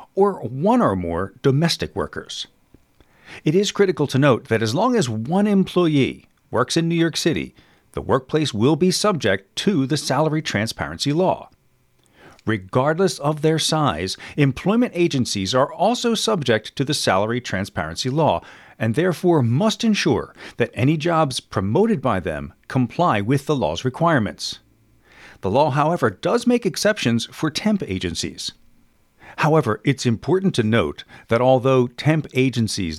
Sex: male